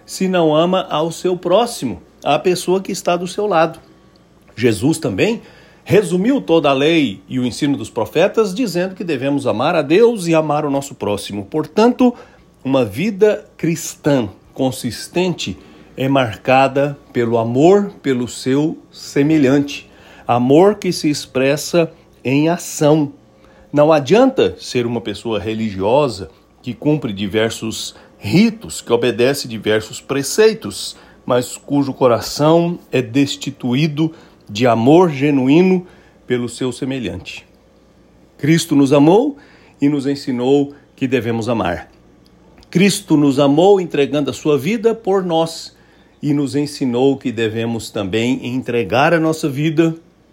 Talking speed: 125 wpm